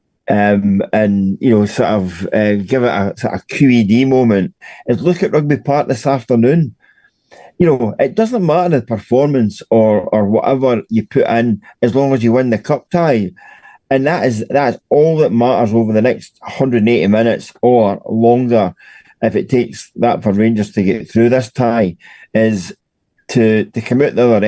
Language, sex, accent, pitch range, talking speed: English, male, British, 105-130 Hz, 180 wpm